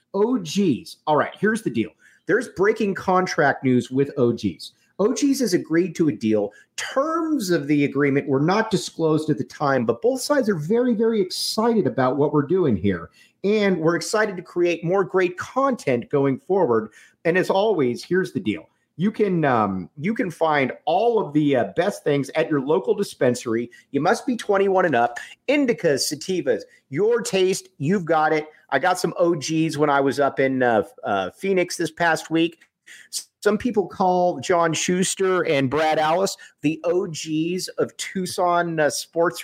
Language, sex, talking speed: English, male, 170 wpm